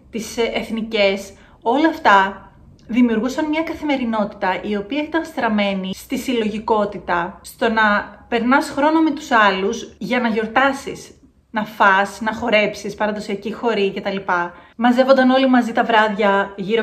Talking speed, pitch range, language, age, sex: 130 wpm, 195-250 Hz, Greek, 30-49, female